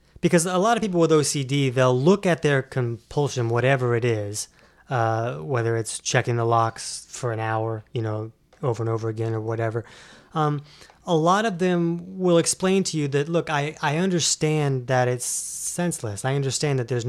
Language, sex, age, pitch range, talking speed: English, male, 20-39, 115-150 Hz, 185 wpm